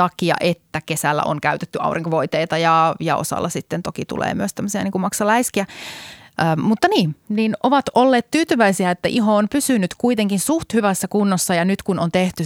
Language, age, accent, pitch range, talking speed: Finnish, 30-49, native, 165-215 Hz, 175 wpm